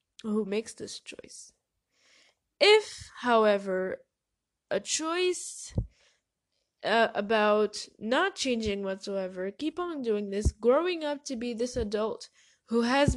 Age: 10-29